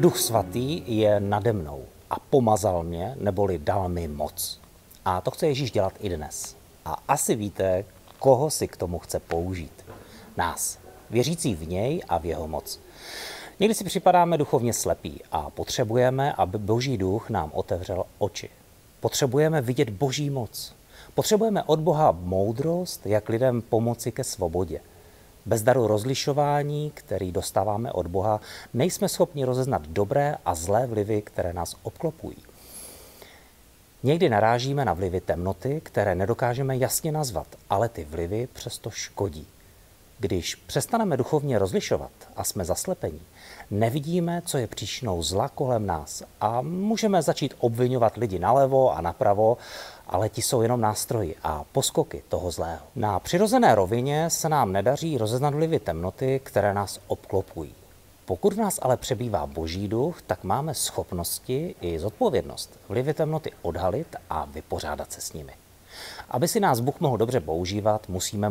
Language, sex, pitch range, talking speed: Czech, male, 95-140 Hz, 145 wpm